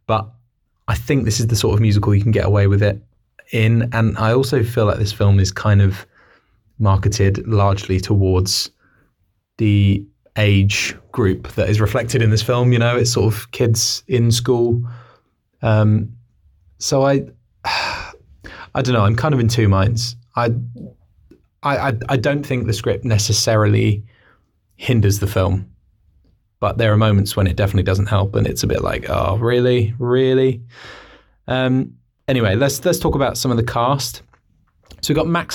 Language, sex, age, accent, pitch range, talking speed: English, male, 20-39, British, 105-125 Hz, 170 wpm